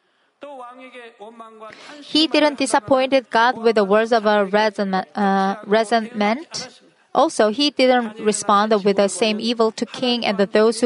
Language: Korean